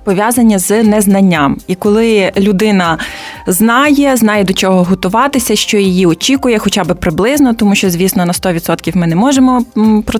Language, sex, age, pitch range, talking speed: Ukrainian, female, 20-39, 185-235 Hz, 155 wpm